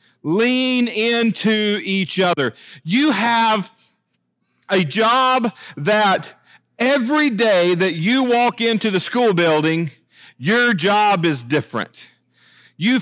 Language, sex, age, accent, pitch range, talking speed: English, male, 40-59, American, 210-260 Hz, 105 wpm